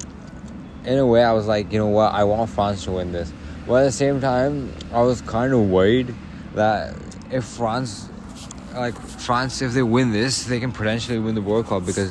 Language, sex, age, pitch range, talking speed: English, male, 20-39, 90-105 Hz, 210 wpm